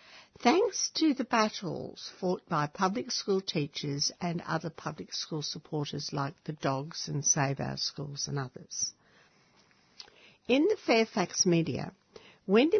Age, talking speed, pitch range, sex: 60-79, 130 wpm, 155-215 Hz, female